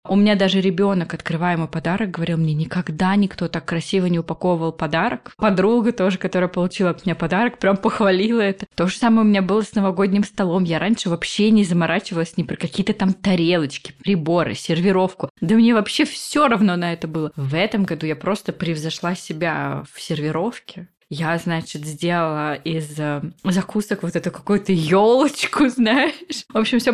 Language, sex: Russian, female